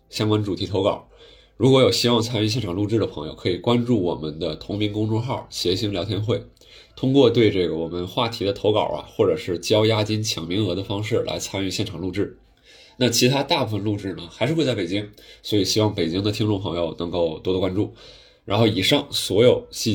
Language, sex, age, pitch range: Chinese, male, 20-39, 95-120 Hz